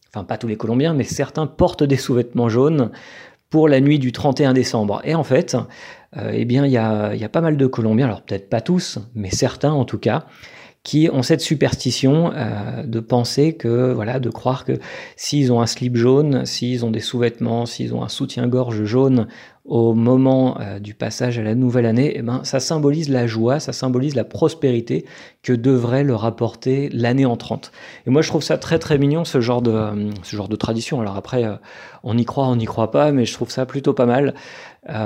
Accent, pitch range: French, 115-140 Hz